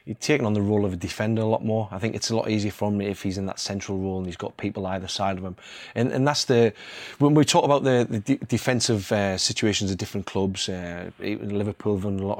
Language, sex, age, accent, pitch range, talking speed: English, male, 30-49, British, 95-115 Hz, 270 wpm